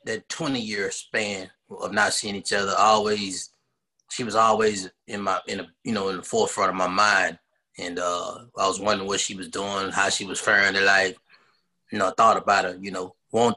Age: 20-39